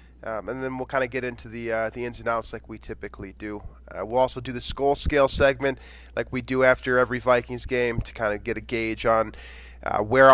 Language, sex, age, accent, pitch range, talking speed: English, male, 20-39, American, 115-150 Hz, 245 wpm